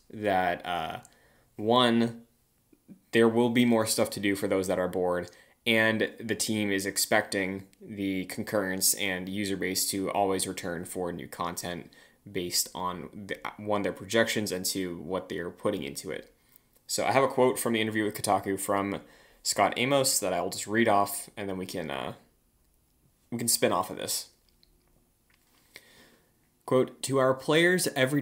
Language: English